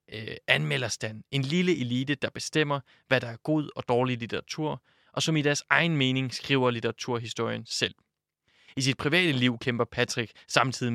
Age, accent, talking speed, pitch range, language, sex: 20-39, native, 160 wpm, 120-145 Hz, Danish, male